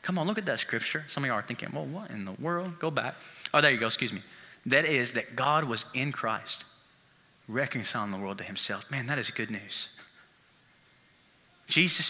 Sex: male